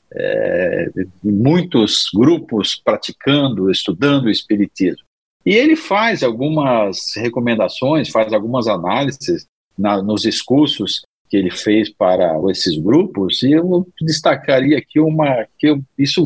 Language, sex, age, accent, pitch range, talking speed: Portuguese, male, 50-69, Brazilian, 115-150 Hz, 120 wpm